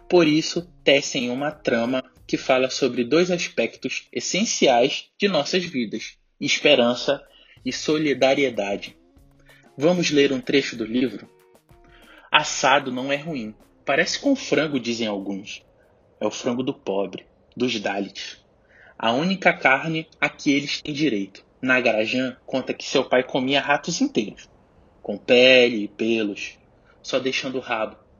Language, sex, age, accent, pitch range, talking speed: Portuguese, male, 20-39, Brazilian, 115-145 Hz, 135 wpm